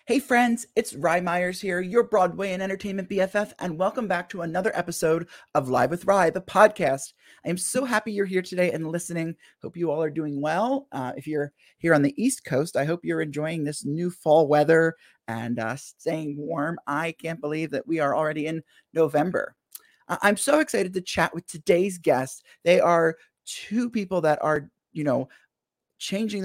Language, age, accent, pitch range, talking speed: English, 30-49, American, 145-185 Hz, 195 wpm